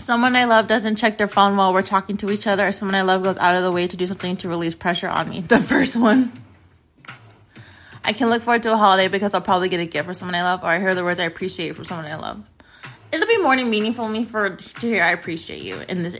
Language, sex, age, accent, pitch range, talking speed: English, female, 20-39, American, 175-220 Hz, 280 wpm